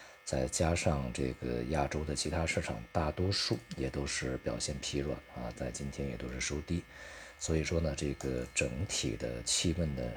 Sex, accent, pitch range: male, native, 65-85 Hz